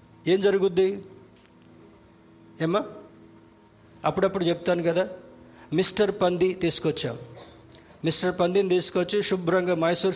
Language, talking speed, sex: Telugu, 85 wpm, male